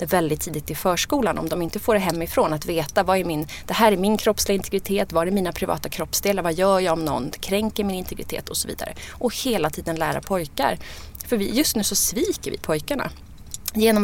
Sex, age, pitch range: female, 20-39, 170-225 Hz